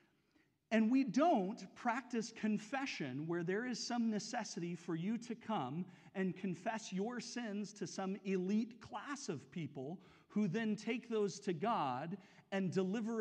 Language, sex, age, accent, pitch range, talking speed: English, male, 40-59, American, 170-230 Hz, 145 wpm